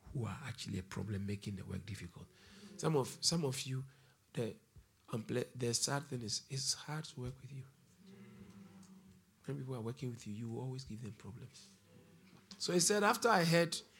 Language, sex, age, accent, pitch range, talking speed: English, male, 50-69, Nigerian, 105-160 Hz, 180 wpm